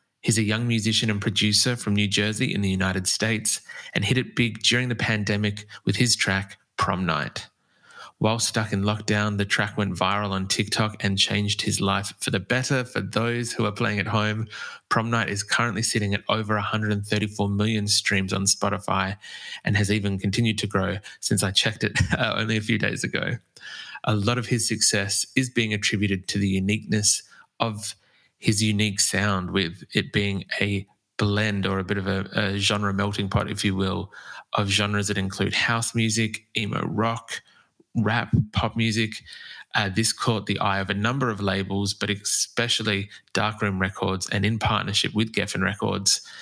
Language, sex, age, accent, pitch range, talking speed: English, male, 20-39, Australian, 100-110 Hz, 180 wpm